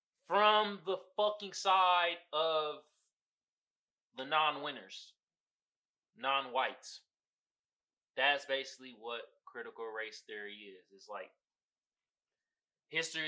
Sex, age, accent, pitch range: male, 20-39, American, 125-185 Hz